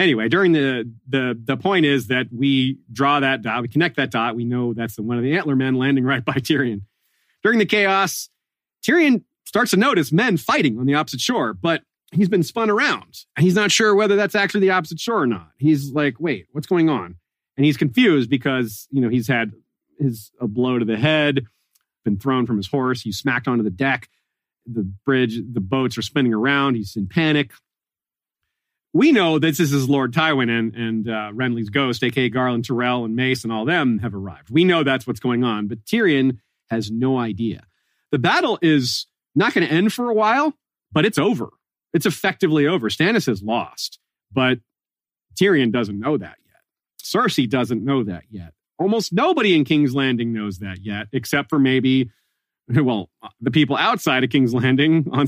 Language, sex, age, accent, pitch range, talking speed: English, male, 40-59, American, 115-155 Hz, 195 wpm